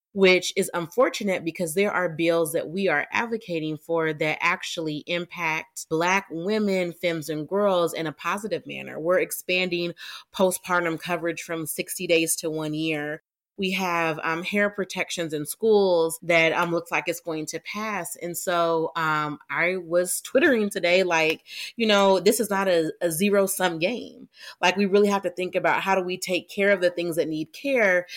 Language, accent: English, American